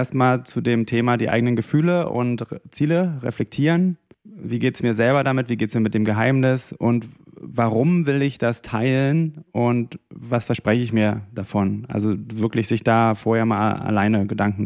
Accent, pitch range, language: German, 110-125 Hz, German